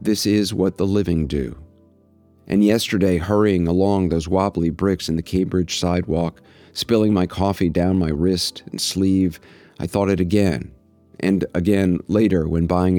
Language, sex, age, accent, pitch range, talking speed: English, male, 40-59, American, 85-100 Hz, 155 wpm